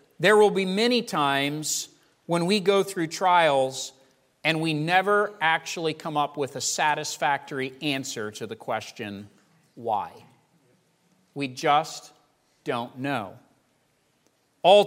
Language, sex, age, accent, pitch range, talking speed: English, male, 40-59, American, 140-200 Hz, 115 wpm